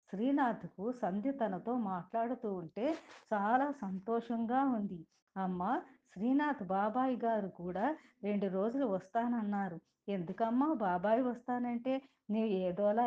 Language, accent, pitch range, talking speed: Telugu, native, 190-260 Hz, 100 wpm